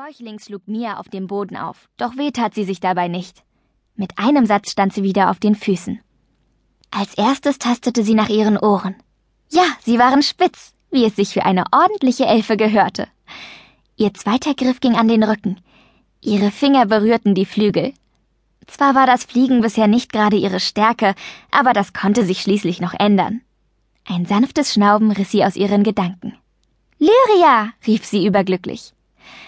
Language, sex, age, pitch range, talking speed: German, female, 20-39, 200-240 Hz, 165 wpm